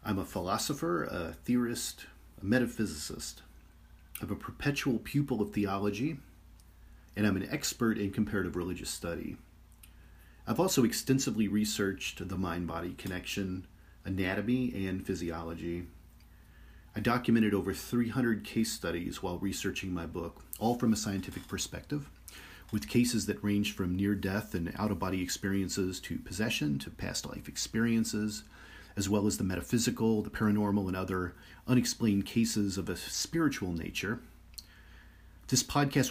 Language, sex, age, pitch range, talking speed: English, male, 40-59, 85-110 Hz, 130 wpm